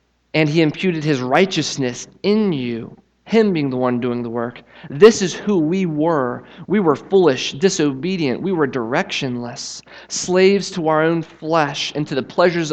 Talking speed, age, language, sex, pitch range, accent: 165 wpm, 30-49, English, male, 130-175 Hz, American